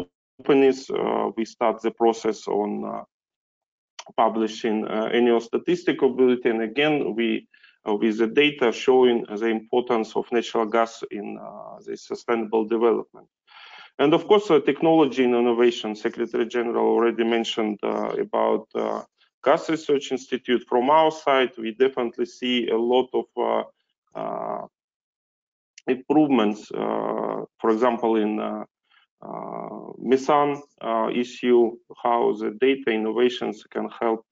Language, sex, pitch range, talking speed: English, male, 115-135 Hz, 130 wpm